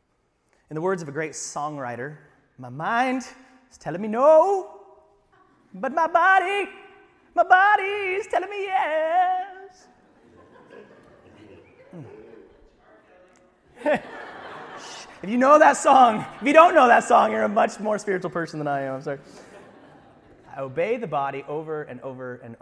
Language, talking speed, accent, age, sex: English, 140 wpm, American, 30-49, male